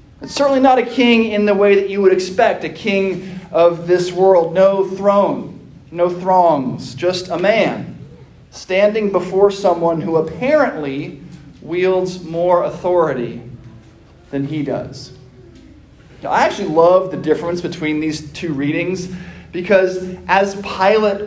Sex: male